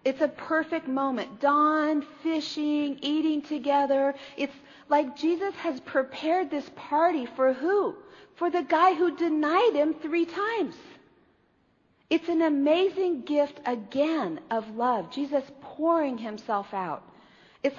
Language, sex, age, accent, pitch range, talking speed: English, female, 50-69, American, 210-300 Hz, 125 wpm